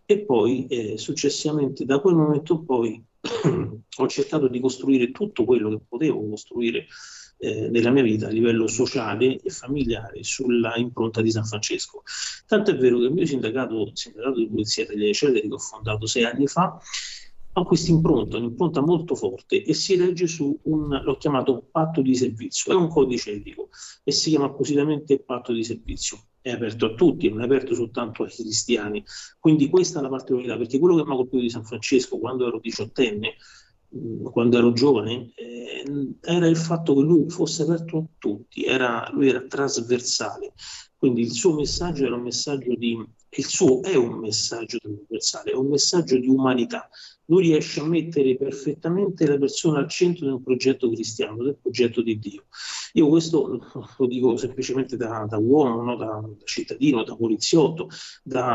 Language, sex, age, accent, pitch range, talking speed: Italian, male, 40-59, native, 120-160 Hz, 175 wpm